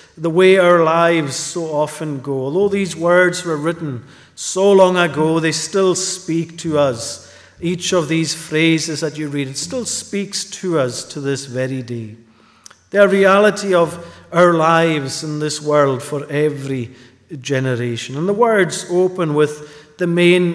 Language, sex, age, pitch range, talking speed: English, male, 50-69, 130-165 Hz, 160 wpm